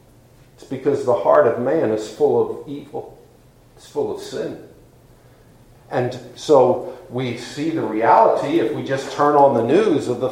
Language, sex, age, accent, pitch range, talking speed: English, male, 50-69, American, 145-210 Hz, 170 wpm